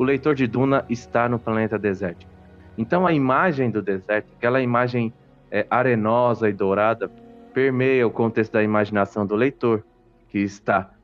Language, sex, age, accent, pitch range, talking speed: Portuguese, male, 20-39, Brazilian, 105-130 Hz, 145 wpm